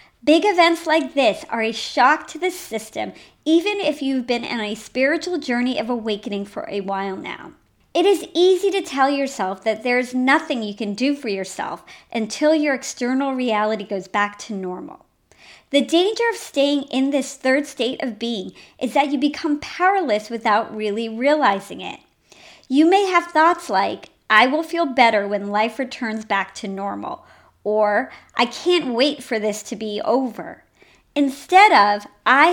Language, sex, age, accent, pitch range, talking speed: English, male, 40-59, American, 220-315 Hz, 170 wpm